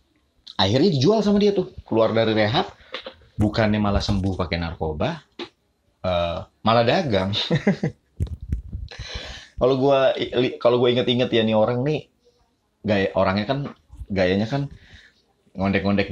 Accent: native